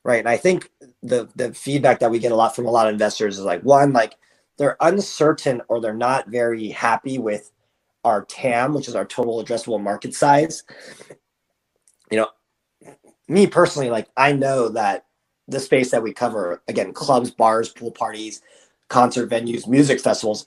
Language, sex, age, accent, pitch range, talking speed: English, male, 30-49, American, 115-145 Hz, 175 wpm